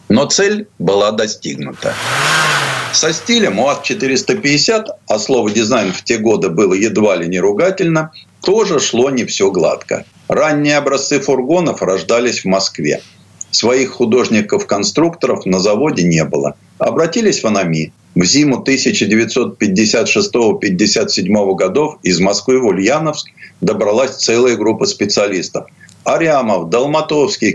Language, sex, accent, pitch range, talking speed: Russian, male, native, 120-175 Hz, 115 wpm